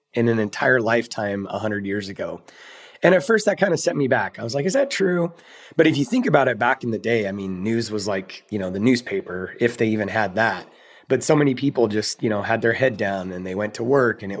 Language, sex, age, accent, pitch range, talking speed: English, male, 30-49, American, 105-135 Hz, 270 wpm